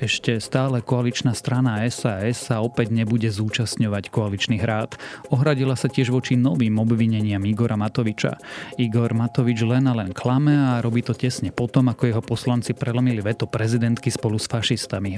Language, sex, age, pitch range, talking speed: Slovak, male, 30-49, 105-125 Hz, 155 wpm